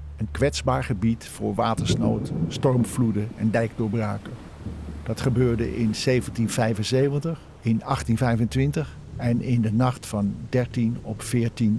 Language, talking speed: Dutch, 110 wpm